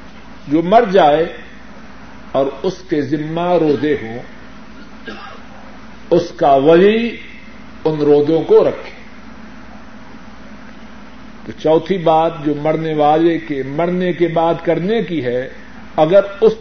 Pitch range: 170-230 Hz